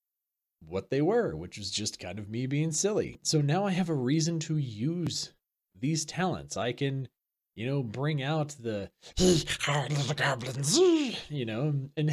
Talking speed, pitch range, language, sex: 160 wpm, 105-155 Hz, English, male